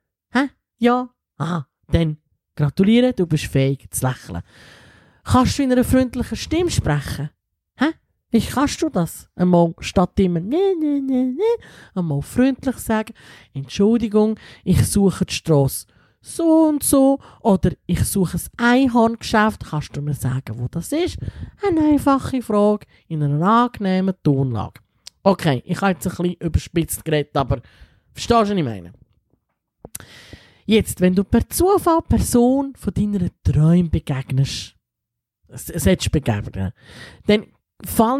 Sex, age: male, 20-39